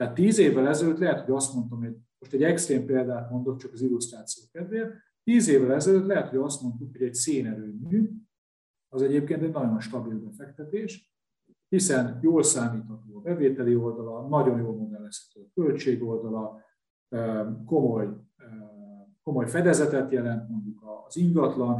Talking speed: 145 wpm